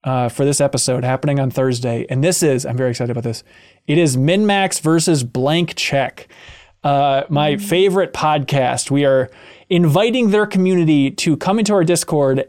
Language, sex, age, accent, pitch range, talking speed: English, male, 20-39, American, 140-185 Hz, 170 wpm